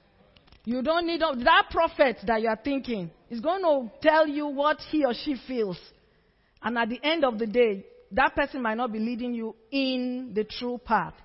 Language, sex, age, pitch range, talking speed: English, female, 40-59, 220-290 Hz, 190 wpm